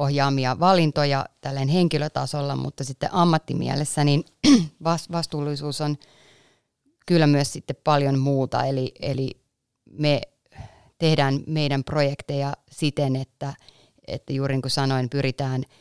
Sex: female